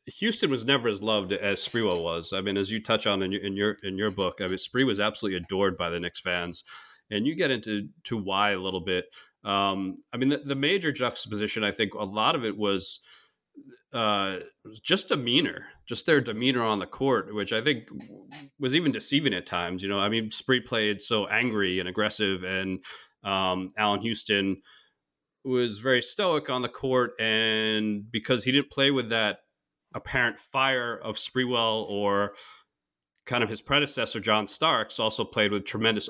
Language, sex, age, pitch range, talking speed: English, male, 30-49, 100-130 Hz, 190 wpm